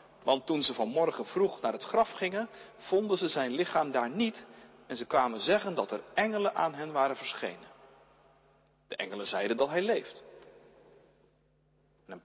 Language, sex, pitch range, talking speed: Dutch, male, 135-205 Hz, 160 wpm